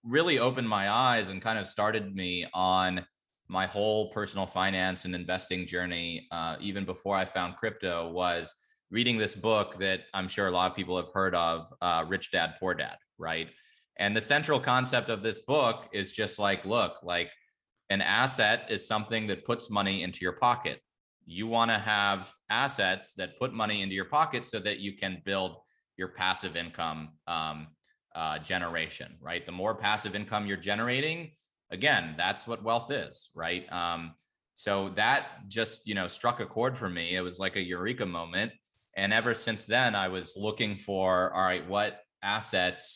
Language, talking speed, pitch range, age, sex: English, 180 wpm, 90-110 Hz, 20-39, male